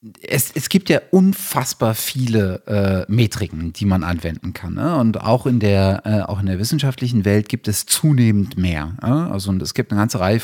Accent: German